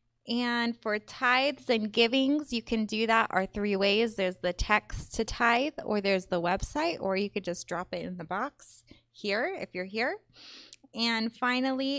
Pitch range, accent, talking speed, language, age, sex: 190-235 Hz, American, 180 wpm, English, 20-39, female